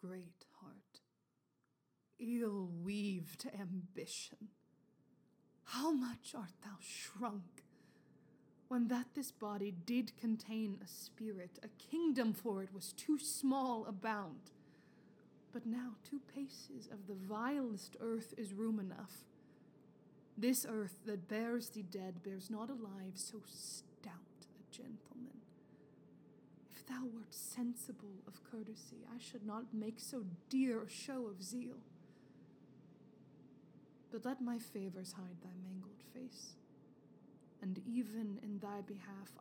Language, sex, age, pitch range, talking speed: English, female, 20-39, 200-240 Hz, 120 wpm